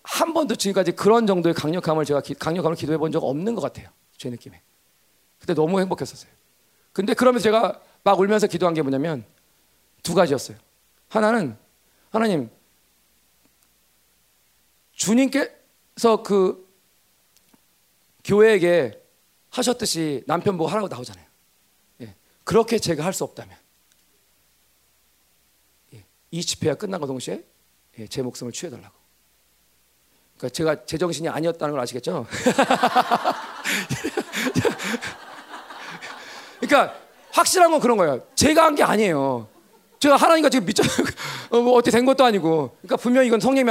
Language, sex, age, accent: Korean, male, 40-59, native